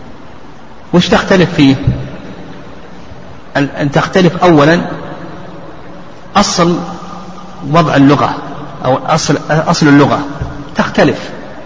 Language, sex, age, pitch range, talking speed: Arabic, male, 40-59, 140-170 Hz, 70 wpm